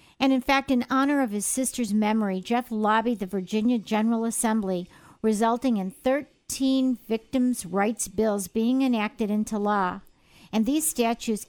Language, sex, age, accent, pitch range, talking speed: English, female, 50-69, American, 215-260 Hz, 145 wpm